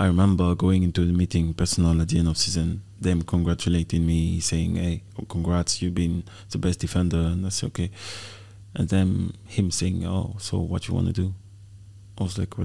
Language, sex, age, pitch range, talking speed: English, male, 20-39, 90-105 Hz, 205 wpm